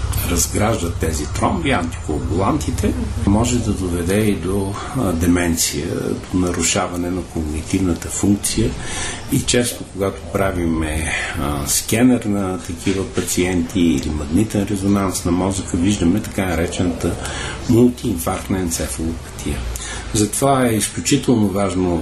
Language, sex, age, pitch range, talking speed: Bulgarian, male, 60-79, 80-100 Hz, 100 wpm